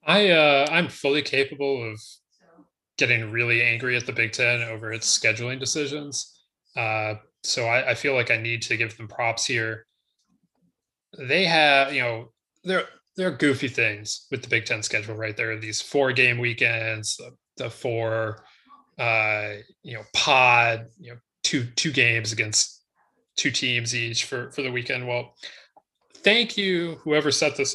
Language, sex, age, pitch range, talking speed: English, male, 20-39, 115-135 Hz, 165 wpm